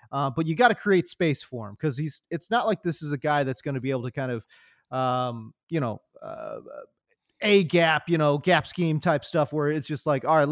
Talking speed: 245 wpm